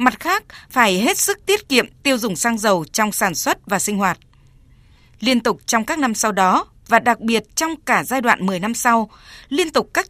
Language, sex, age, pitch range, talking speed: Vietnamese, female, 20-39, 205-260 Hz, 220 wpm